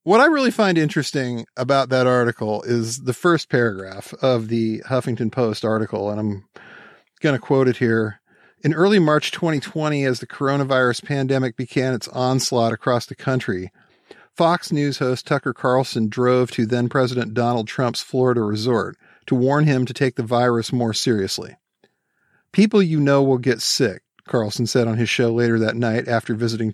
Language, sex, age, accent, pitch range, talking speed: English, male, 50-69, American, 115-140 Hz, 170 wpm